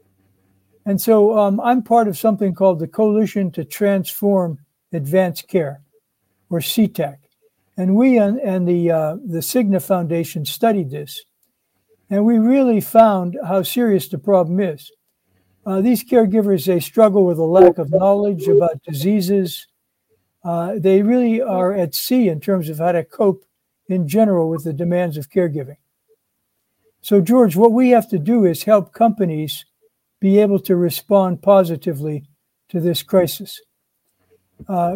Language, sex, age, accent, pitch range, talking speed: English, male, 60-79, American, 170-215 Hz, 145 wpm